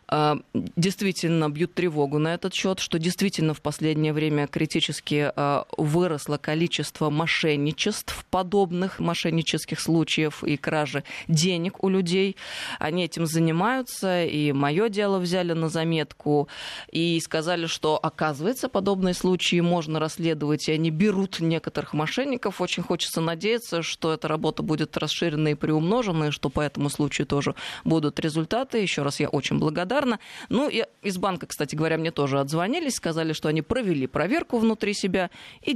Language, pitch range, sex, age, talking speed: Russian, 150-185 Hz, female, 20-39, 140 wpm